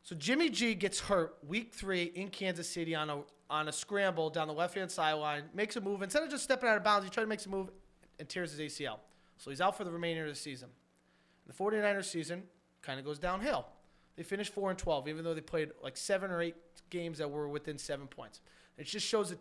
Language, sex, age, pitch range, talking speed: English, male, 30-49, 155-210 Hz, 245 wpm